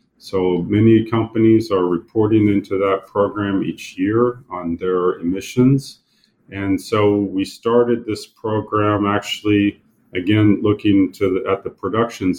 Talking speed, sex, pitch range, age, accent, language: 130 wpm, male, 95-110 Hz, 40-59, American, English